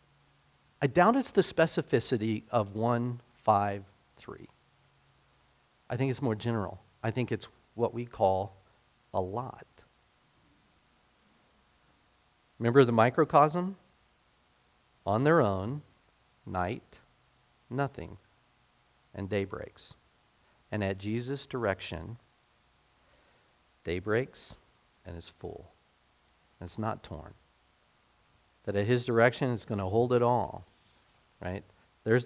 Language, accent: English, American